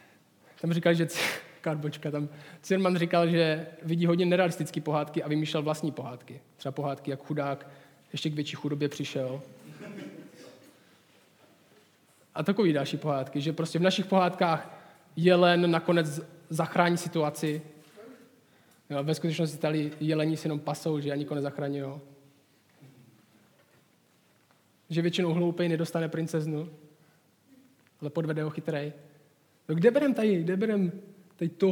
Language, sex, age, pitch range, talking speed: Czech, male, 20-39, 150-185 Hz, 125 wpm